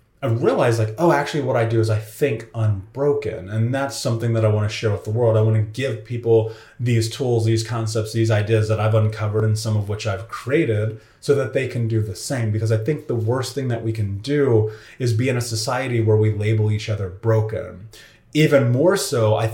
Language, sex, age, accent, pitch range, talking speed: English, male, 30-49, American, 105-120 Hz, 230 wpm